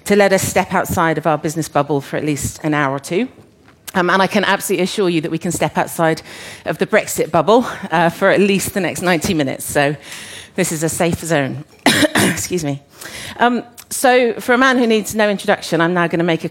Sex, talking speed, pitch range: female, 225 wpm, 155-185 Hz